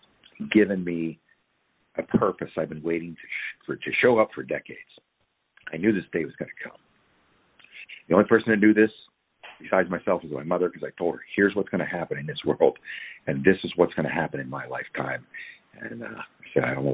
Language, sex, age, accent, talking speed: English, male, 50-69, American, 225 wpm